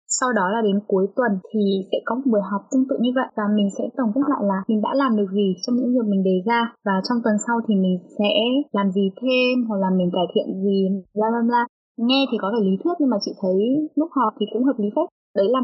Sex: female